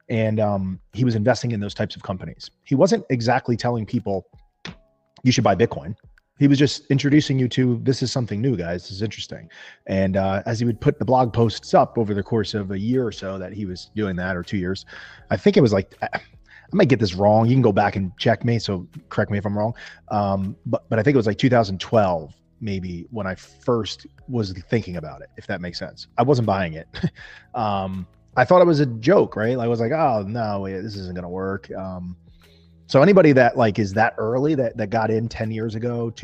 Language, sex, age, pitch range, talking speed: Bulgarian, male, 30-49, 95-120 Hz, 235 wpm